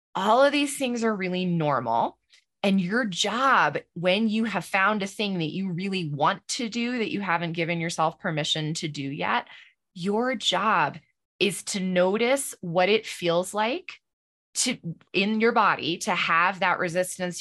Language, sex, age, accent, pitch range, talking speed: English, female, 20-39, American, 175-220 Hz, 165 wpm